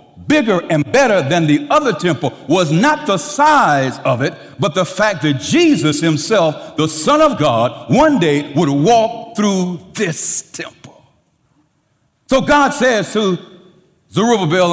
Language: English